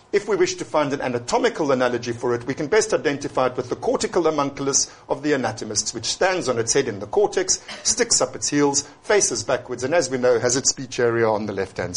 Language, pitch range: English, 125-165 Hz